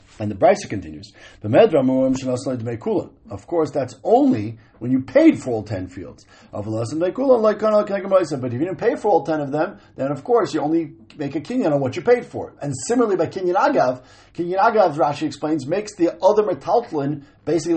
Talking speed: 175 wpm